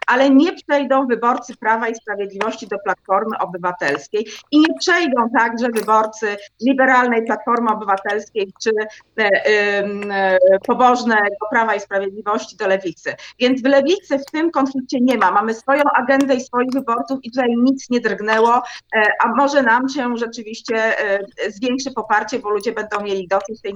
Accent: native